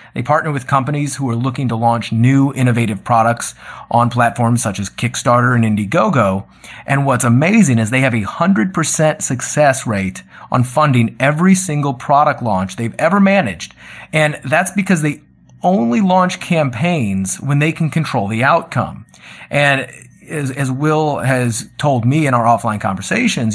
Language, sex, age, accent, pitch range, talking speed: English, male, 30-49, American, 115-150 Hz, 160 wpm